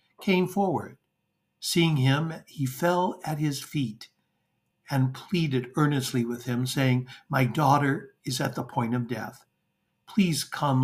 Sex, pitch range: male, 125-160 Hz